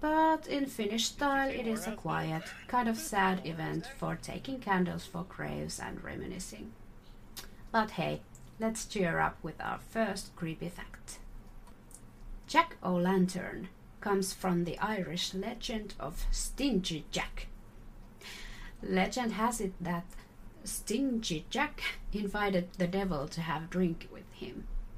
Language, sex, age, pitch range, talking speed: English, female, 30-49, 175-225 Hz, 130 wpm